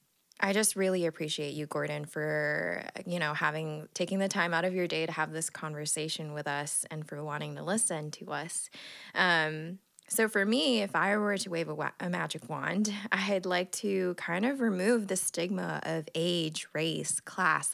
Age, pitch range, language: 20-39, 165-200 Hz, English